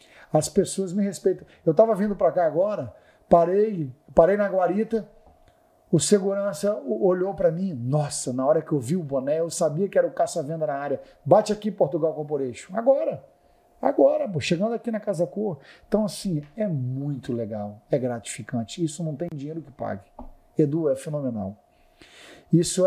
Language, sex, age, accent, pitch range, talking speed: Portuguese, male, 50-69, Brazilian, 145-195 Hz, 165 wpm